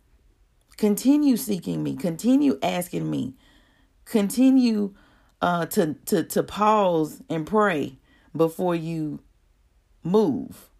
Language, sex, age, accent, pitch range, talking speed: English, female, 40-59, American, 160-235 Hz, 95 wpm